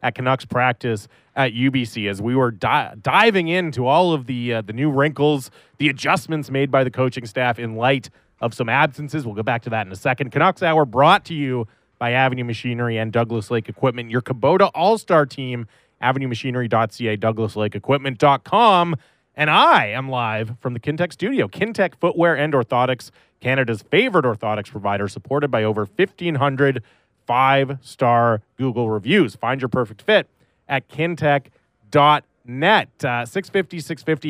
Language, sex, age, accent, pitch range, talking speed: English, male, 30-49, American, 115-150 Hz, 155 wpm